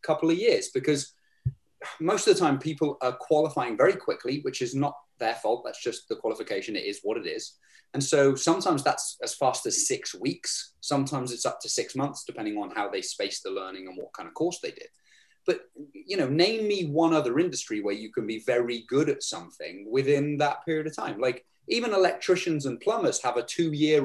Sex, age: male, 20-39